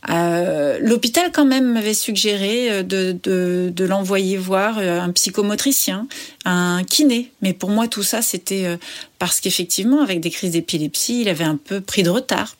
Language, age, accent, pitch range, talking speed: French, 40-59, French, 175-260 Hz, 160 wpm